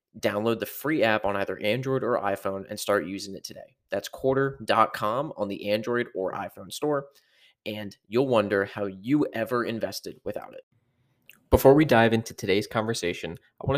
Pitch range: 105-130 Hz